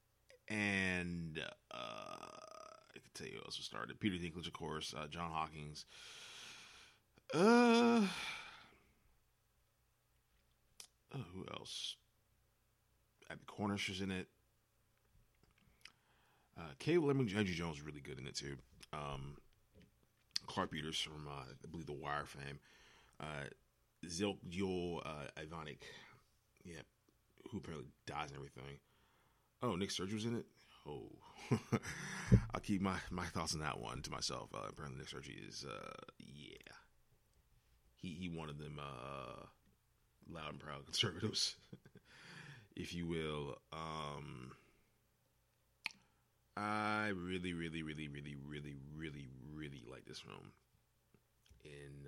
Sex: male